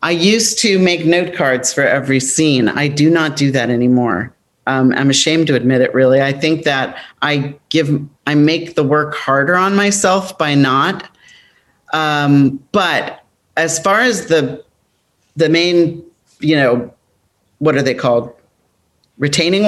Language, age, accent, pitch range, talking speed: English, 40-59, American, 140-170 Hz, 155 wpm